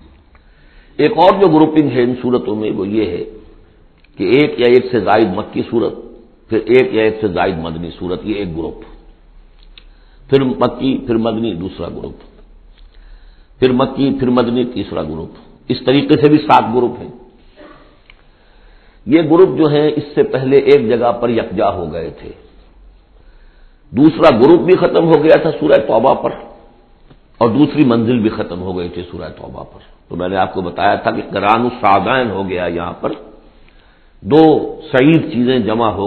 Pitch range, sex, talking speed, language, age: 95-135 Hz, male, 170 wpm, Urdu, 60-79